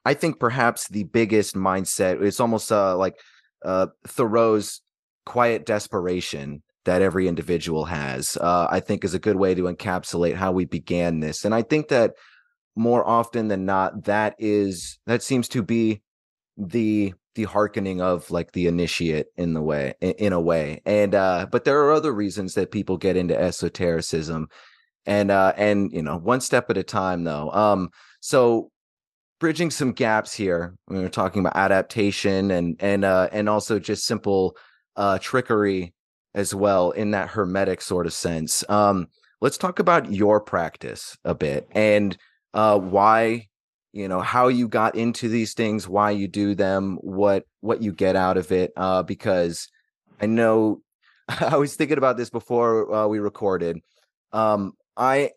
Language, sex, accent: English, male, American